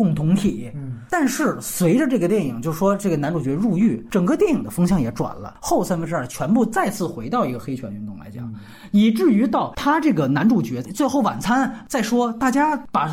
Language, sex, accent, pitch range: Chinese, male, native, 160-255 Hz